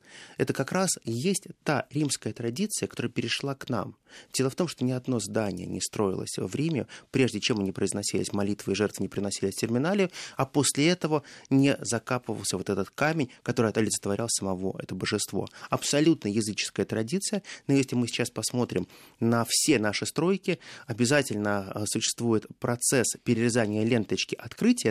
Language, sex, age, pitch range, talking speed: Russian, male, 30-49, 105-140 Hz, 155 wpm